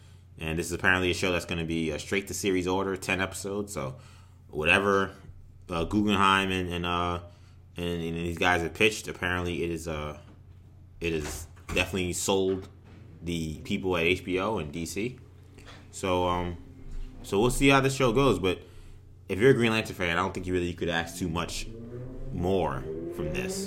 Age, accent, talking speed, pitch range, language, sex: 20-39, American, 185 wpm, 85-100 Hz, English, male